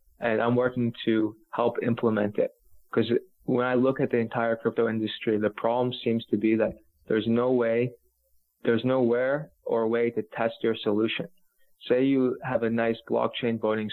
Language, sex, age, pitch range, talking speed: English, male, 20-39, 110-120 Hz, 170 wpm